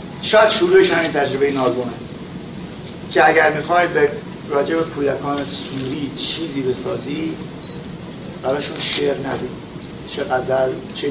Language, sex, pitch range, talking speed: Persian, male, 145-240 Hz, 120 wpm